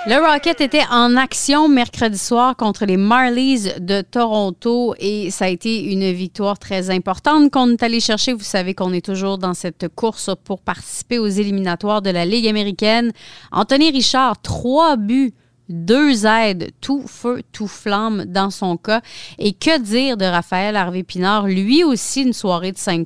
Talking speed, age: 170 wpm, 30-49